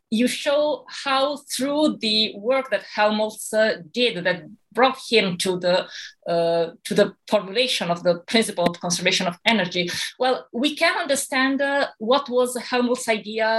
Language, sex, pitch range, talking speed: English, female, 185-250 Hz, 155 wpm